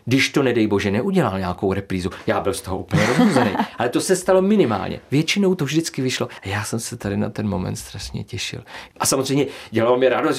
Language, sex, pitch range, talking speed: Czech, male, 110-140 Hz, 215 wpm